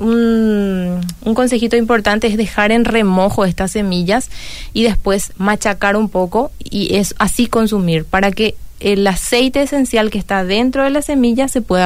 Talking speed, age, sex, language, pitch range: 160 wpm, 20-39, female, Spanish, 180-220 Hz